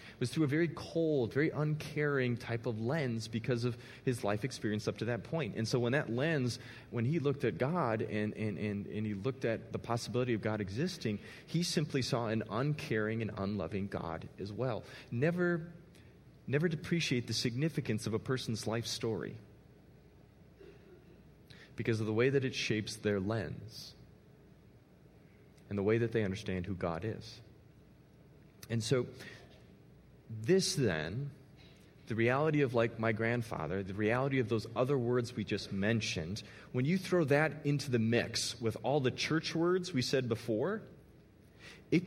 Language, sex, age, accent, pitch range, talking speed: English, male, 30-49, American, 115-155 Hz, 160 wpm